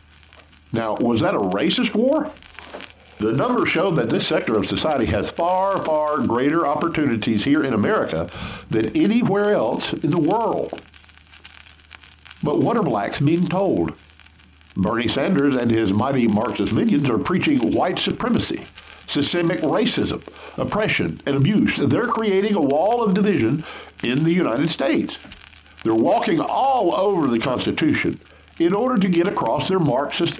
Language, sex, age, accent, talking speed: English, male, 50-69, American, 145 wpm